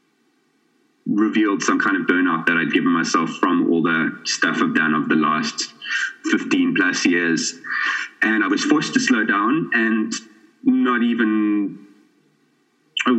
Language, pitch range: English, 265-305 Hz